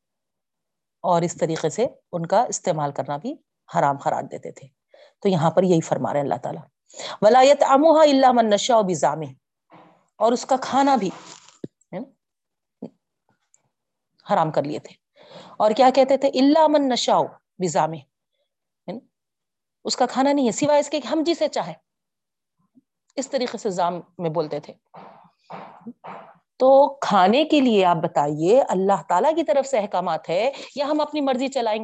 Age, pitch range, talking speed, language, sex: 40-59, 185-275 Hz, 145 wpm, Urdu, female